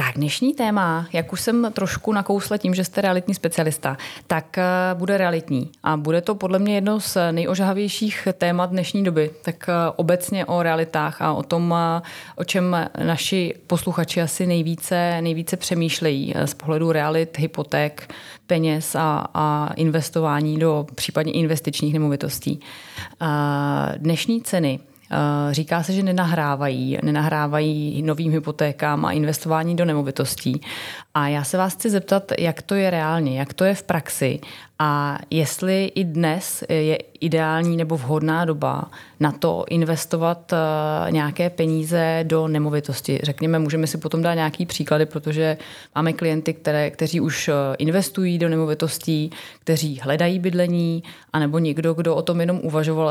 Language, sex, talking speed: Czech, female, 140 wpm